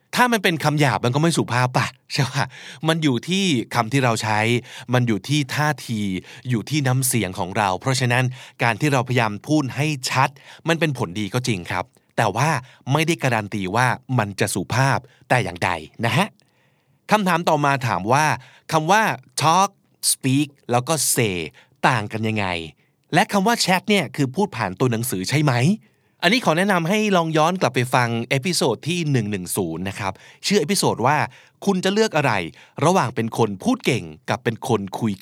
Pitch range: 115-155 Hz